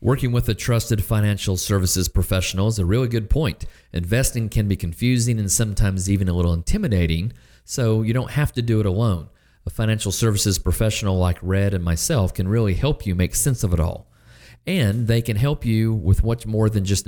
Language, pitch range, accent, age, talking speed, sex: English, 90-115 Hz, American, 40-59, 200 wpm, male